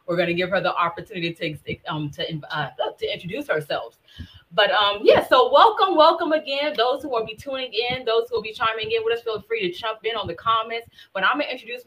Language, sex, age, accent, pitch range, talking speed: English, female, 20-39, American, 165-220 Hz, 245 wpm